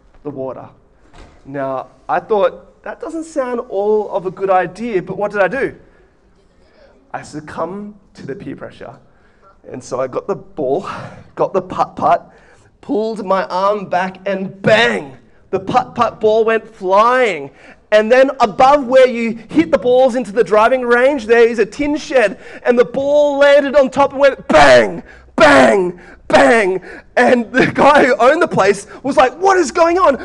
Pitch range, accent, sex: 150-255 Hz, Australian, male